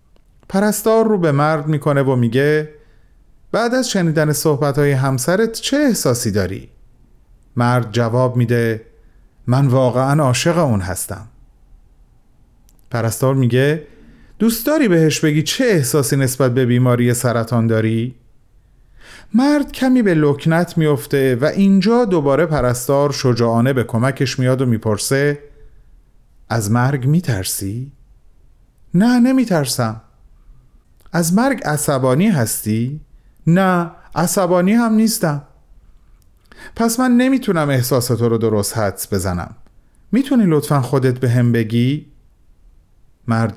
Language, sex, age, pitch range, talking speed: Persian, male, 30-49, 115-175 Hz, 110 wpm